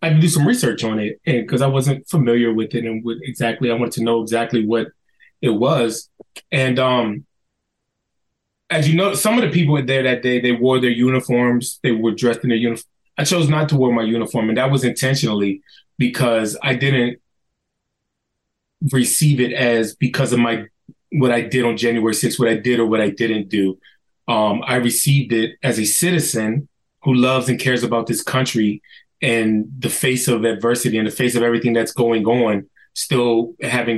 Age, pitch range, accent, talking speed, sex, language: 20-39, 115-130 Hz, American, 200 wpm, male, English